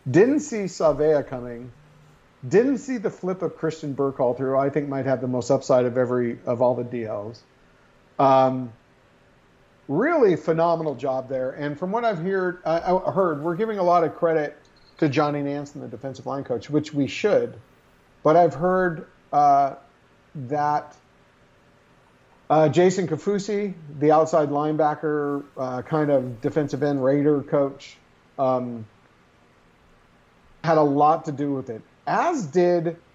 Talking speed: 150 wpm